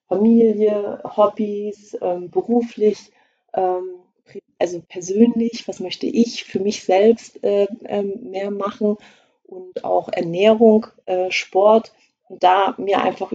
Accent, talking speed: German, 115 wpm